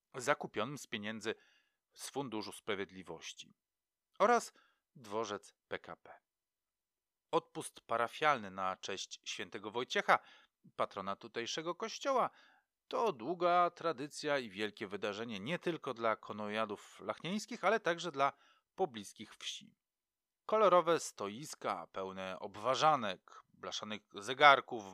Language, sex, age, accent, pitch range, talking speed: Polish, male, 40-59, native, 105-170 Hz, 95 wpm